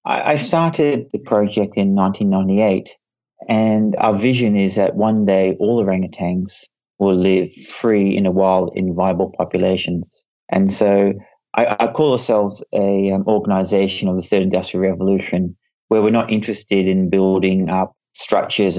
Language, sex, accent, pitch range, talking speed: English, male, Australian, 95-110 Hz, 145 wpm